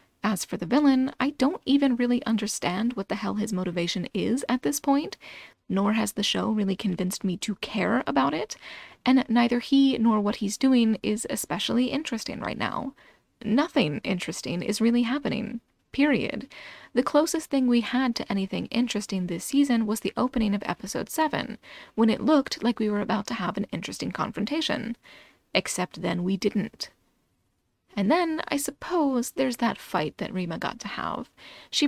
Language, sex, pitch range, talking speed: English, female, 195-260 Hz, 175 wpm